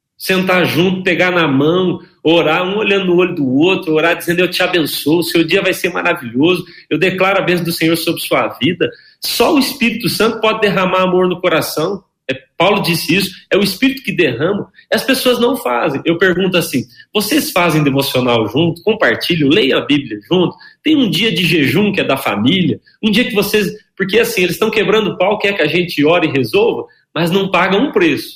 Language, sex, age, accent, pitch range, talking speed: Portuguese, male, 40-59, Brazilian, 155-200 Hz, 205 wpm